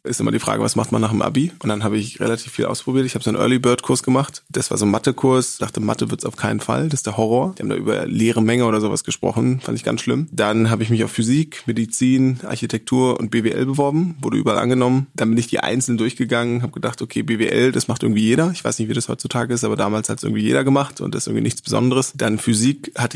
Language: German